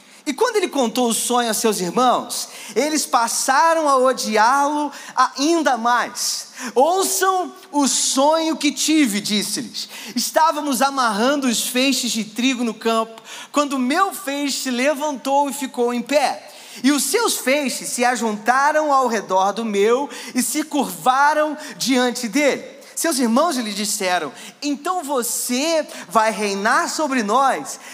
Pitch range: 230-295 Hz